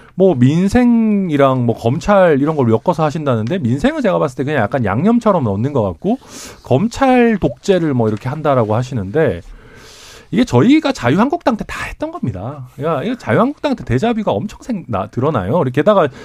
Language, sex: Korean, male